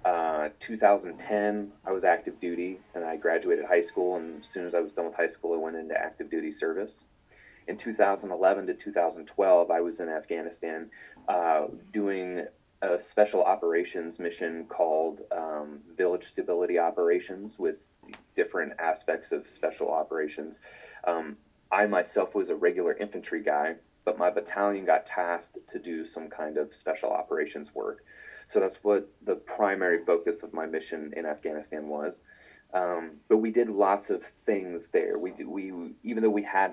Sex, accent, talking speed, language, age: male, American, 160 wpm, English, 30-49